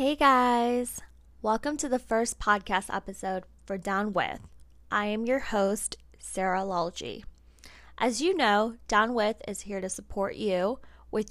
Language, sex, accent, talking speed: English, female, American, 150 wpm